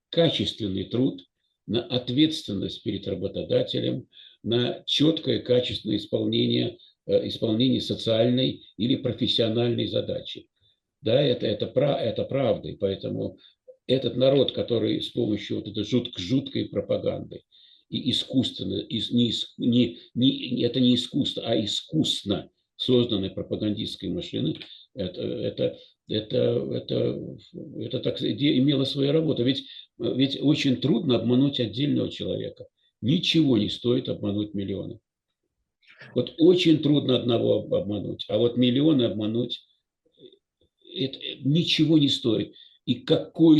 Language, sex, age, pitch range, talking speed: Russian, male, 50-69, 115-140 Hz, 110 wpm